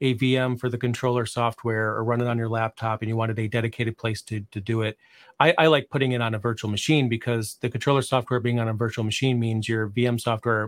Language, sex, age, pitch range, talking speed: English, male, 40-59, 115-140 Hz, 245 wpm